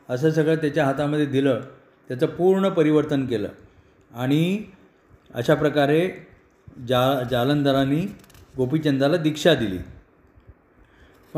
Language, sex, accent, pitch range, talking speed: Marathi, male, native, 135-175 Hz, 90 wpm